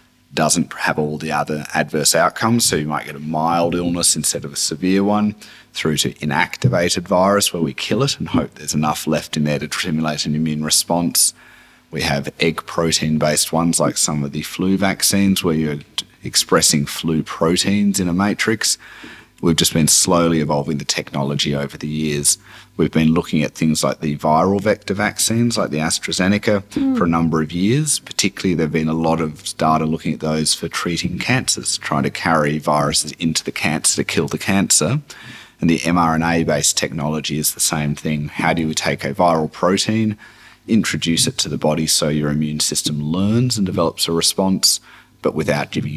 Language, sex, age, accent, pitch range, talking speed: English, male, 30-49, Australian, 75-95 Hz, 185 wpm